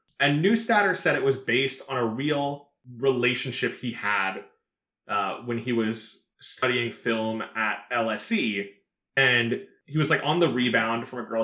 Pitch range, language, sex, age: 110-135 Hz, English, male, 20-39